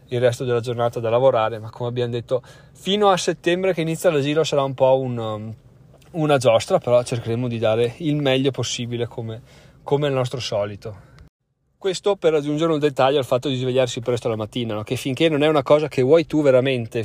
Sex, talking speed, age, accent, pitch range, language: male, 200 wpm, 20-39, native, 125-155 Hz, Italian